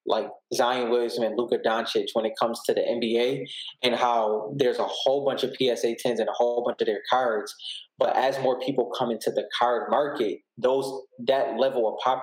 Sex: male